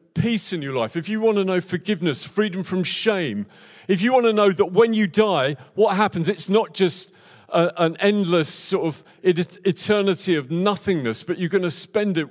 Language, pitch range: English, 145-190 Hz